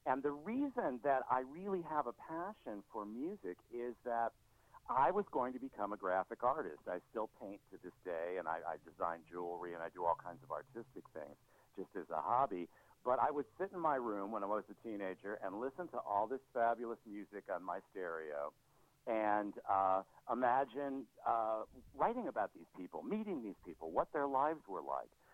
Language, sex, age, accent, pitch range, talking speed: English, male, 60-79, American, 100-135 Hz, 195 wpm